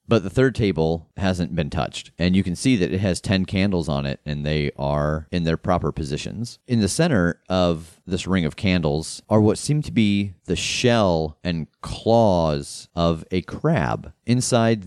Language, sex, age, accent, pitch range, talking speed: English, male, 30-49, American, 80-105 Hz, 185 wpm